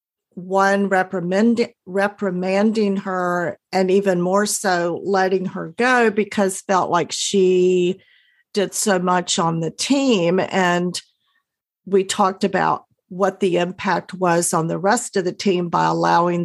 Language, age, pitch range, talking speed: English, 50-69, 180-205 Hz, 135 wpm